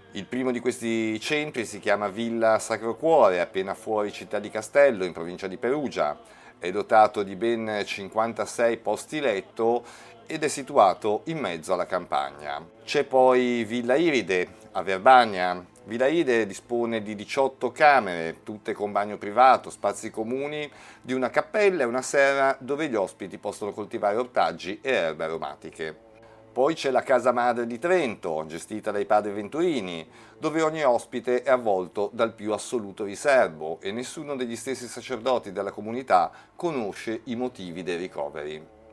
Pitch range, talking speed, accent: 105-130 Hz, 150 wpm, native